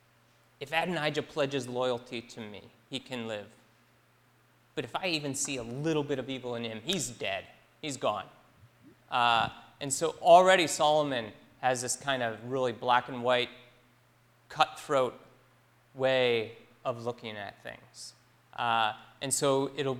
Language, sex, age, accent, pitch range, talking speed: English, male, 30-49, American, 120-160 Hz, 145 wpm